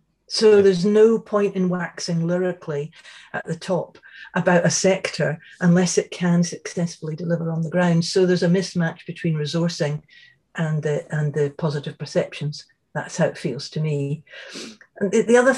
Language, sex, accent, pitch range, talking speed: English, female, British, 165-195 Hz, 160 wpm